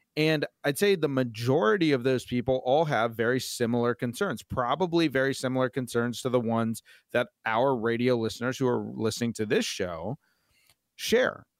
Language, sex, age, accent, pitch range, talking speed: English, male, 30-49, American, 115-145 Hz, 160 wpm